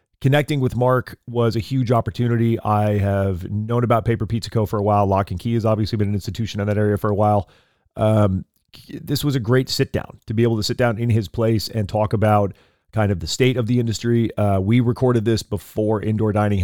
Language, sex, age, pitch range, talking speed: English, male, 30-49, 100-120 Hz, 225 wpm